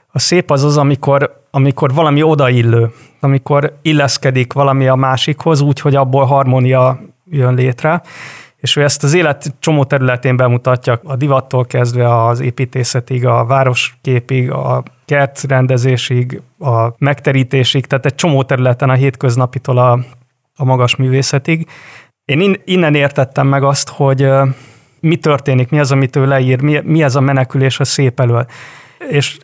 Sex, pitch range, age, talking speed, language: male, 130-145 Hz, 30-49, 140 wpm, Hungarian